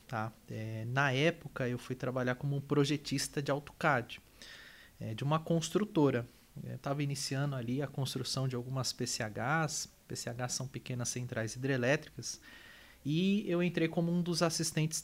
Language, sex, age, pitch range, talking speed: Portuguese, male, 20-39, 125-160 Hz, 150 wpm